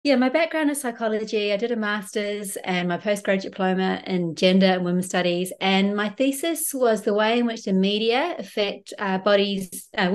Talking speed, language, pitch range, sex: 190 wpm, English, 190-230 Hz, female